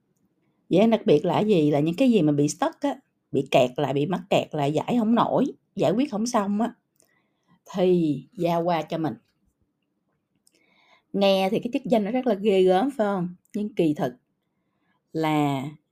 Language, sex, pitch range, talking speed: Vietnamese, female, 155-205 Hz, 190 wpm